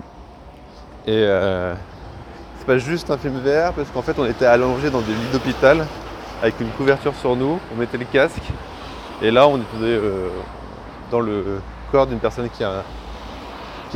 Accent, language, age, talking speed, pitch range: French, French, 20-39, 170 wpm, 90-115 Hz